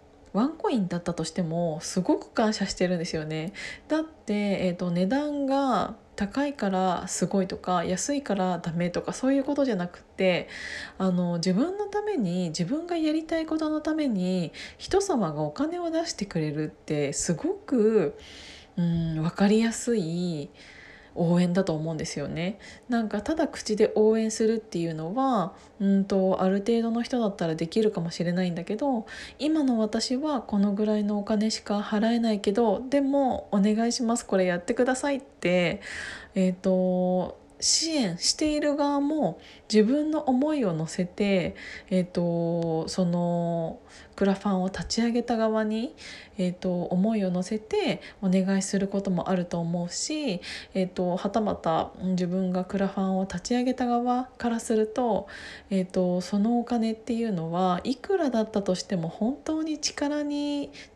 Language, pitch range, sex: Japanese, 180-245 Hz, female